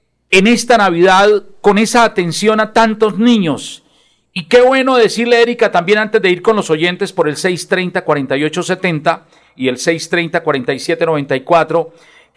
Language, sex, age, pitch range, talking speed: Spanish, male, 50-69, 175-225 Hz, 130 wpm